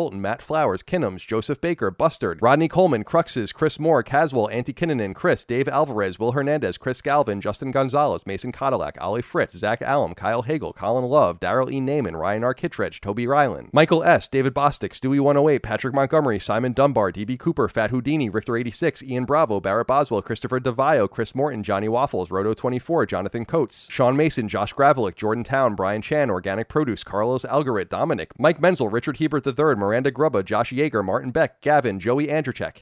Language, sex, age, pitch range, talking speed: English, male, 30-49, 115-150 Hz, 185 wpm